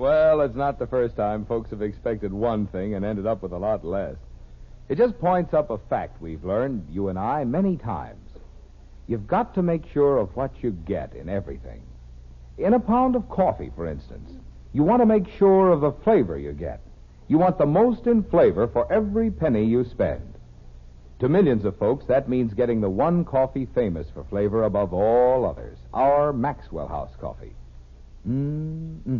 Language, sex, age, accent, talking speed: English, male, 60-79, American, 185 wpm